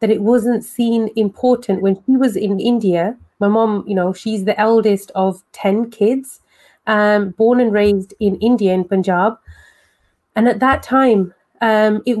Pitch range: 200-235 Hz